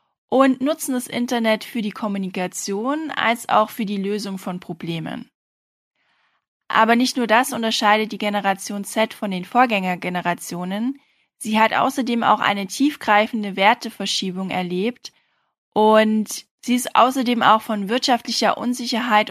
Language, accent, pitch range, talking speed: German, German, 195-240 Hz, 125 wpm